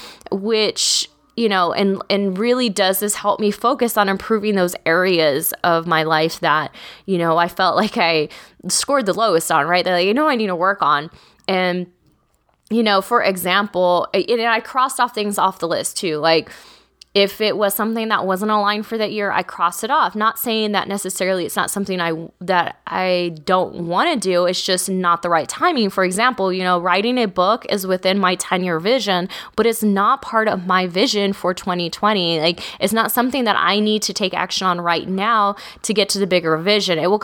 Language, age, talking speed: English, 20-39, 210 wpm